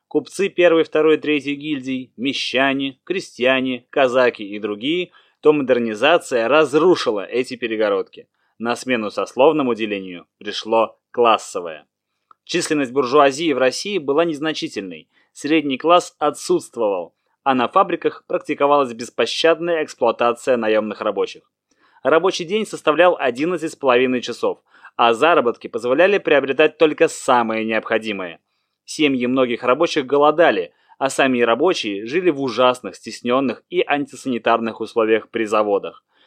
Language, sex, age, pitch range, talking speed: Russian, male, 20-39, 120-170 Hz, 110 wpm